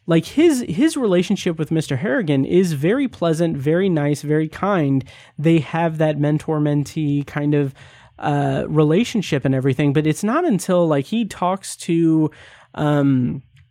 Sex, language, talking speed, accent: male, English, 150 wpm, American